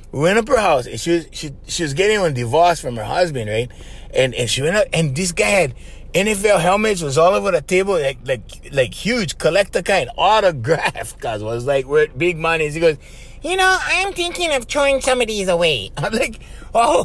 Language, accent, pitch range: English, American, 150-220 Hz